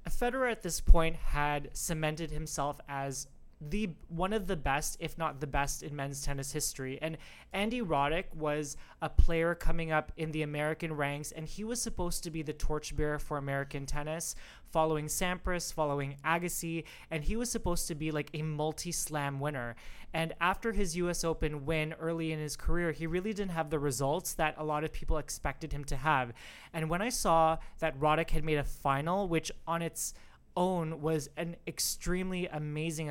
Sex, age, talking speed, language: male, 20-39, 185 wpm, English